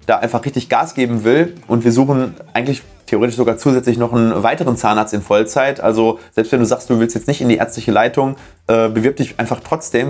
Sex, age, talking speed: male, 30-49, 220 wpm